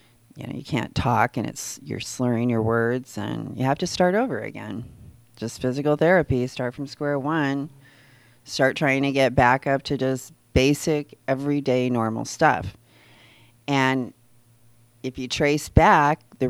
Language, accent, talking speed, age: English, American, 155 wpm, 40-59